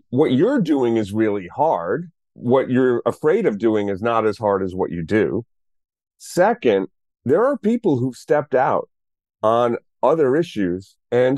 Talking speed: 160 wpm